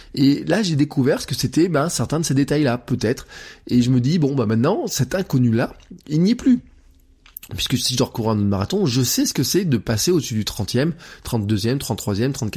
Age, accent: 20-39, French